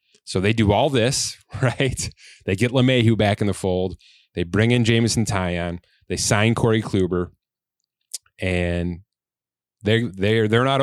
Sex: male